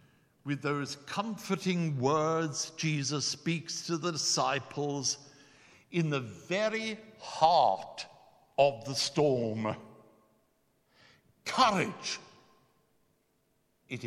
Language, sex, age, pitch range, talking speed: English, male, 60-79, 135-190 Hz, 75 wpm